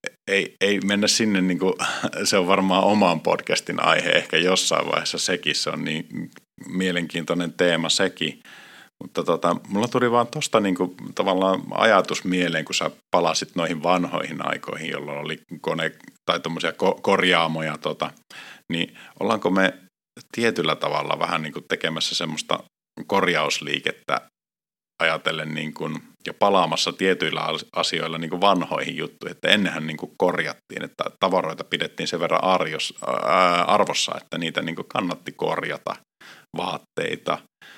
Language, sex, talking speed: Finnish, male, 135 wpm